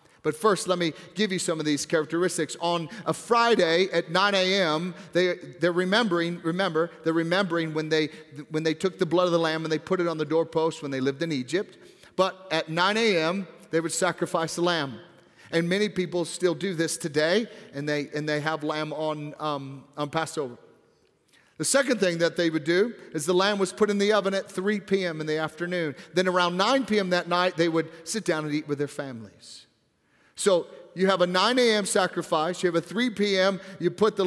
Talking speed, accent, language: 210 wpm, American, English